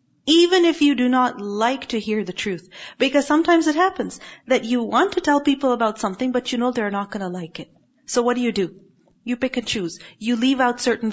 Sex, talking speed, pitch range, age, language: female, 235 wpm, 220-300 Hz, 40-59, English